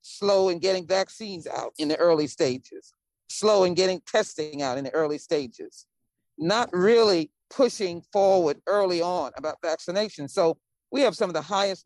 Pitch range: 160-205 Hz